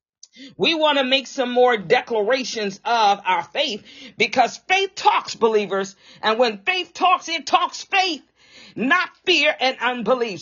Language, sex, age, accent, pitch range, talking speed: English, female, 40-59, American, 215-315 Hz, 145 wpm